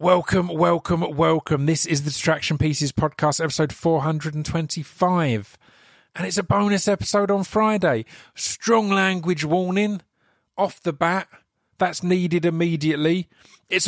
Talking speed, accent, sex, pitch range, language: 120 wpm, British, male, 135-180 Hz, English